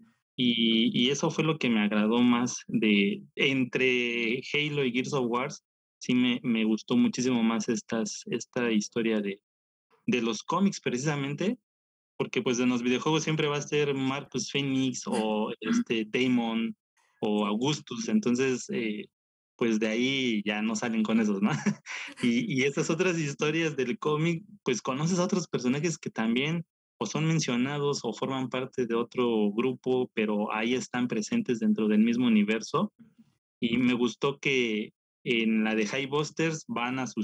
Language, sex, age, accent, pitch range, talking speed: Spanish, male, 20-39, Mexican, 115-165 Hz, 160 wpm